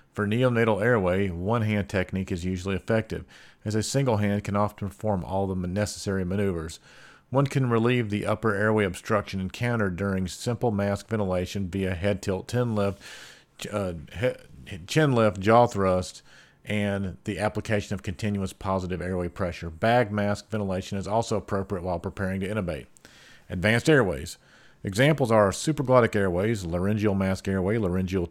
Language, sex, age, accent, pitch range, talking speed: English, male, 40-59, American, 95-115 Hz, 140 wpm